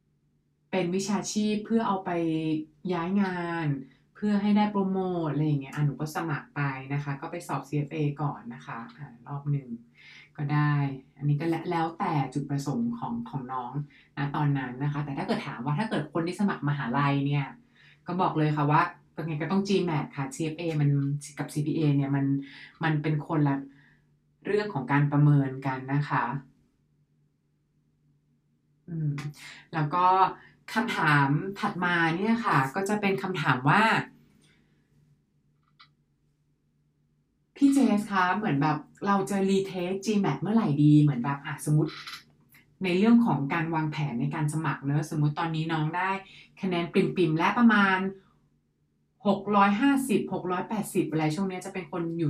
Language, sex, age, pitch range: English, female, 20-39, 140-185 Hz